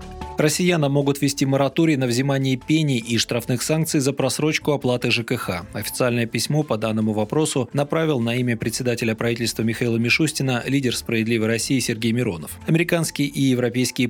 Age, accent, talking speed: 20-39, native, 145 wpm